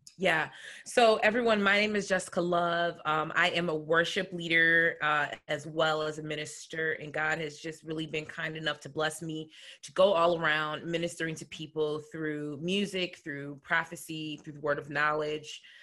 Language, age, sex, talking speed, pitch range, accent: English, 20-39, female, 180 wpm, 150-170 Hz, American